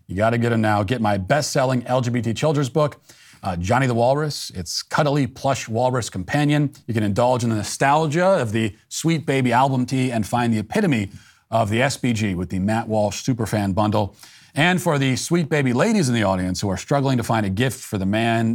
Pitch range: 100-130 Hz